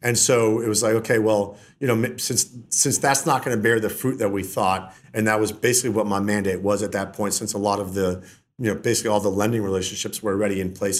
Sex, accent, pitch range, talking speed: male, American, 100-120 Hz, 260 wpm